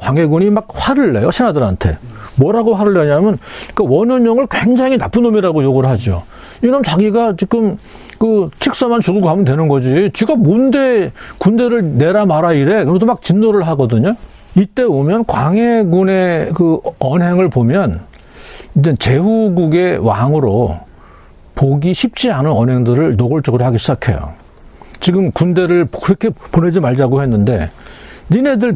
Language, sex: Korean, male